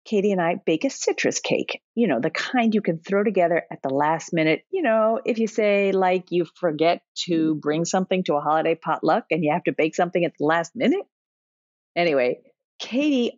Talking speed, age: 205 wpm, 50-69